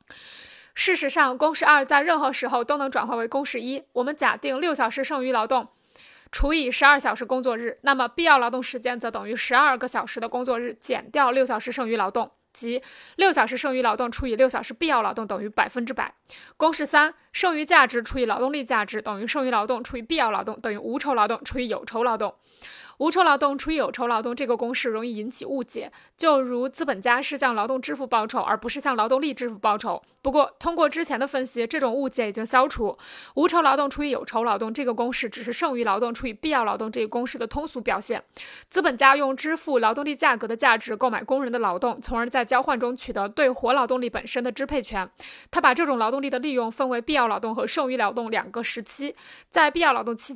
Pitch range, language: 235-280 Hz, Chinese